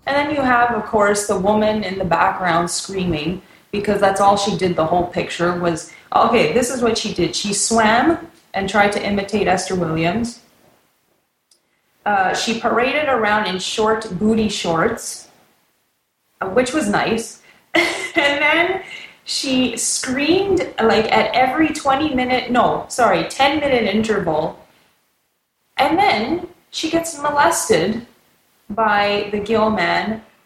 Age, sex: 20-39, female